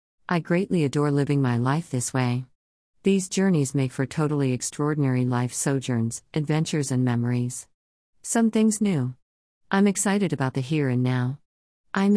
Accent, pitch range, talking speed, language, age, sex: American, 130-170 Hz, 150 wpm, English, 50-69, female